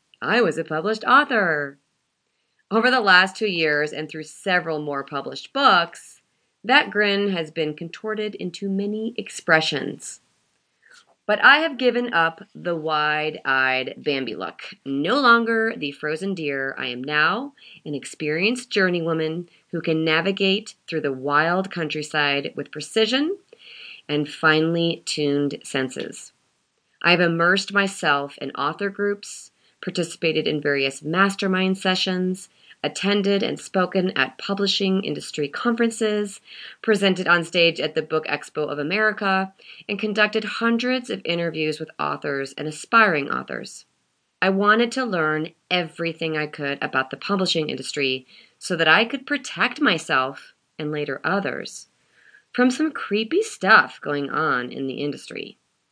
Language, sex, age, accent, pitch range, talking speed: English, female, 30-49, American, 150-205 Hz, 135 wpm